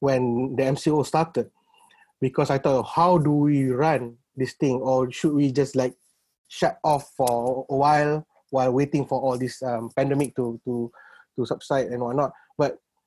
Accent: Malaysian